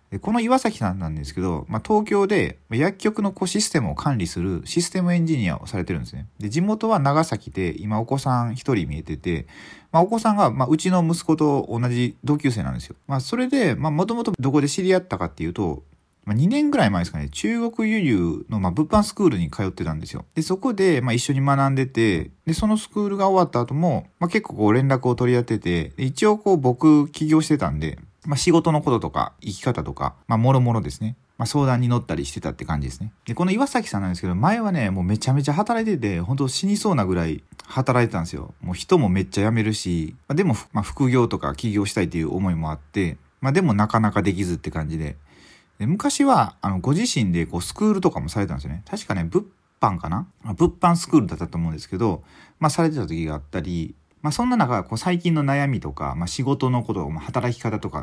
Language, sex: Japanese, male